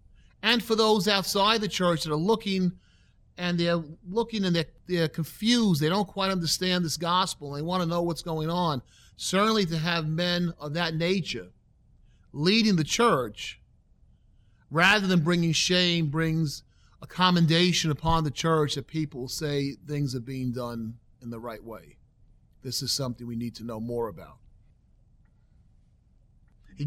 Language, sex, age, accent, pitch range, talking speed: English, male, 40-59, American, 130-175 Hz, 160 wpm